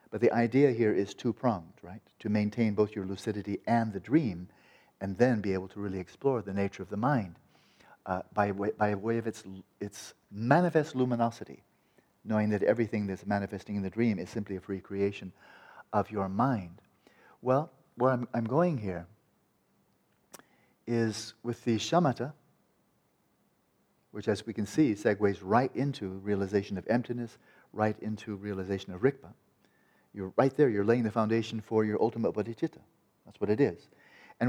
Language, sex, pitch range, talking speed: English, male, 100-125 Hz, 165 wpm